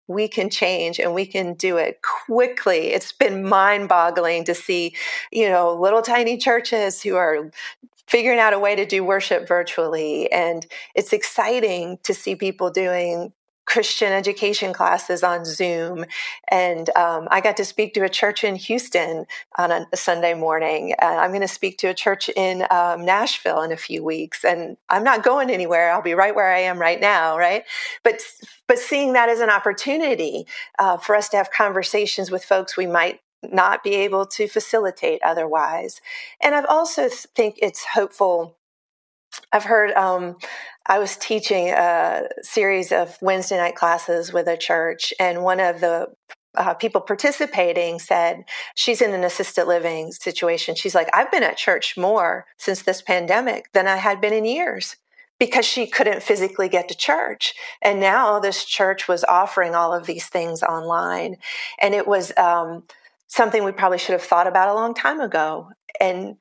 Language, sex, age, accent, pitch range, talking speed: English, female, 40-59, American, 175-225 Hz, 175 wpm